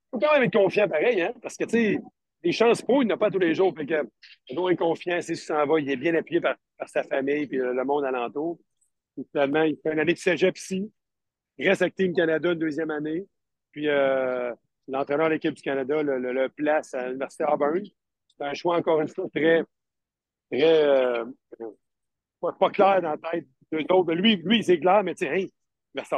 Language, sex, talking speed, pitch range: French, male, 225 wpm, 140-175 Hz